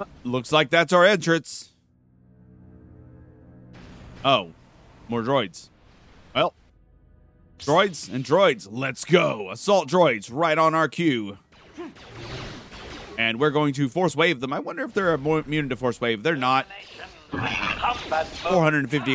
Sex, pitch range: male, 100-140 Hz